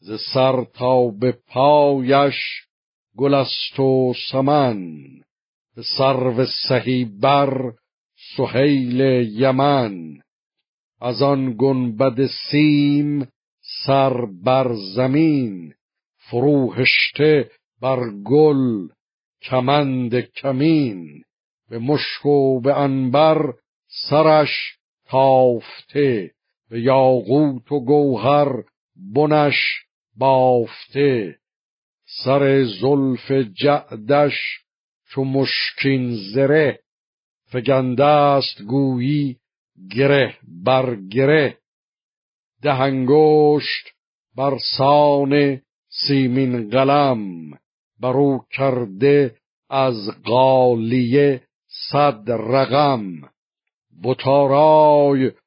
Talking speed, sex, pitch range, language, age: 65 wpm, male, 125-140 Hz, Persian, 60-79